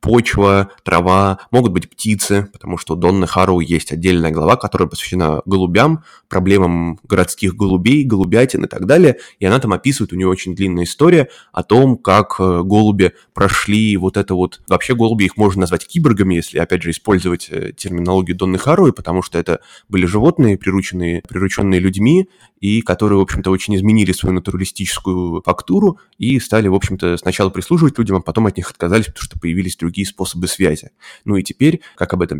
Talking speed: 175 wpm